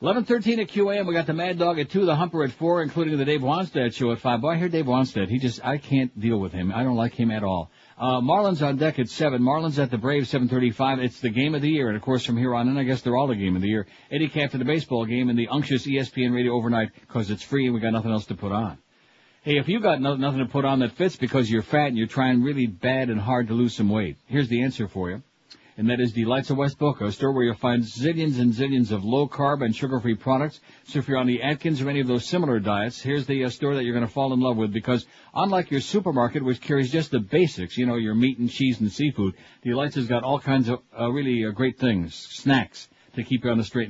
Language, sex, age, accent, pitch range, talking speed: English, male, 60-79, American, 115-140 Hz, 280 wpm